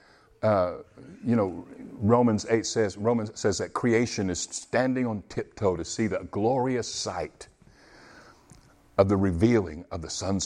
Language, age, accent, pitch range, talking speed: English, 50-69, American, 100-140 Hz, 145 wpm